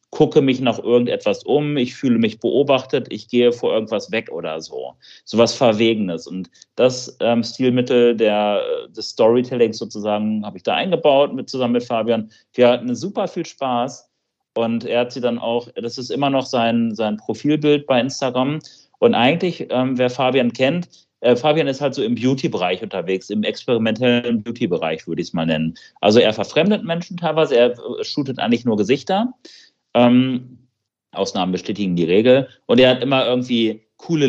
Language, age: German, 40-59